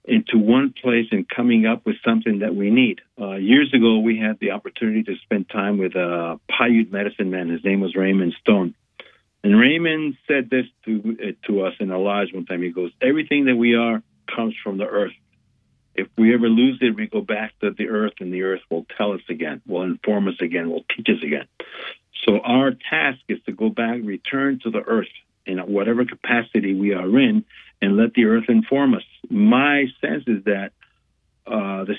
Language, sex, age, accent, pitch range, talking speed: English, male, 50-69, American, 100-125 Hz, 205 wpm